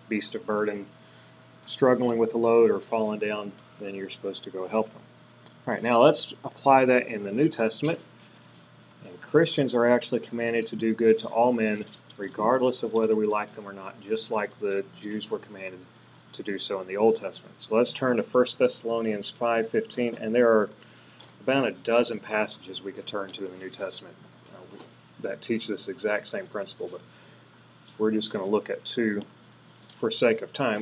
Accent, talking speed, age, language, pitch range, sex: American, 195 wpm, 30-49, English, 105-130 Hz, male